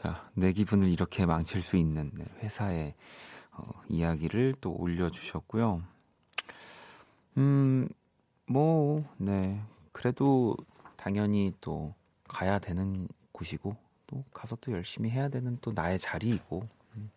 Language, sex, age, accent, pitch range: Korean, male, 40-59, native, 90-120 Hz